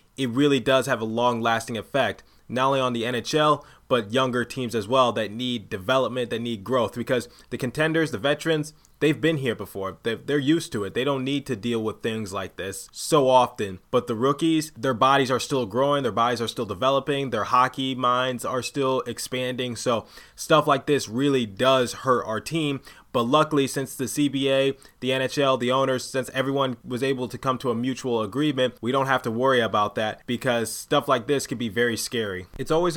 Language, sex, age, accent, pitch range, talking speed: English, male, 20-39, American, 110-130 Hz, 200 wpm